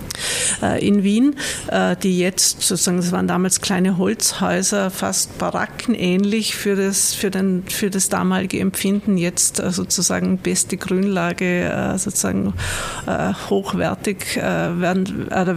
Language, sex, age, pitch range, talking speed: German, female, 50-69, 185-215 Hz, 110 wpm